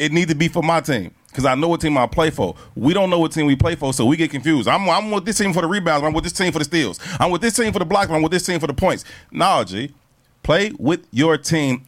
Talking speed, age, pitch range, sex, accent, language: 315 wpm, 30-49, 110-155 Hz, male, American, English